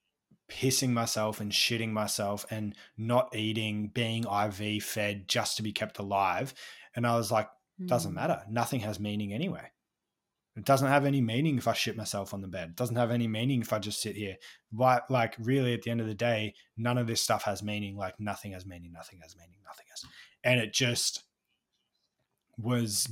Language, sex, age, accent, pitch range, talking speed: English, male, 20-39, Australian, 105-125 Hz, 195 wpm